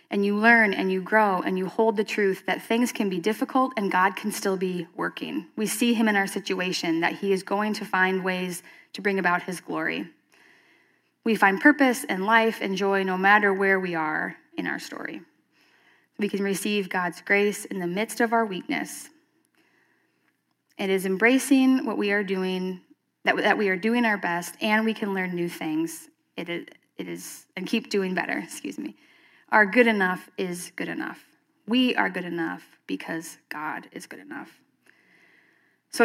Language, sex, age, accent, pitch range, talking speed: English, female, 20-39, American, 185-225 Hz, 185 wpm